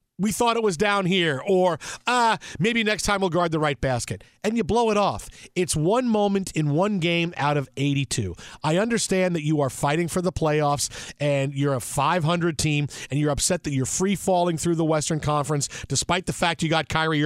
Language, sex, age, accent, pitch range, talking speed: English, male, 40-59, American, 145-190 Hz, 210 wpm